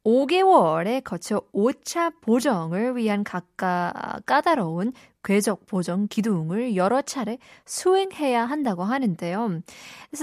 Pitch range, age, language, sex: 185-245 Hz, 20-39, Korean, female